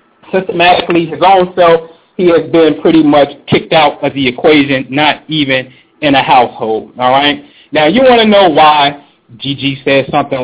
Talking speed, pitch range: 170 wpm, 165-250 Hz